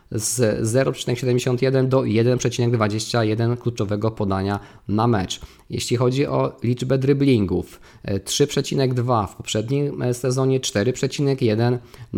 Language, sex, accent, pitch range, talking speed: Polish, male, native, 105-130 Hz, 90 wpm